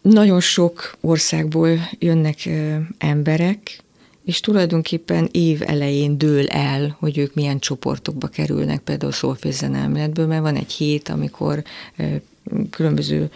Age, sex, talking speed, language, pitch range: 30-49, female, 120 wpm, Hungarian, 140-160 Hz